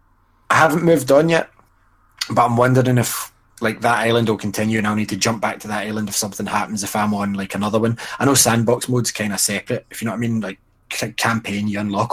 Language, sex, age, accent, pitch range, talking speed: English, male, 20-39, British, 100-120 Hz, 245 wpm